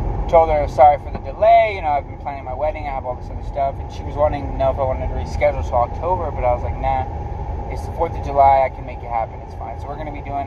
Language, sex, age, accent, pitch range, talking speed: English, male, 20-39, American, 80-130 Hz, 310 wpm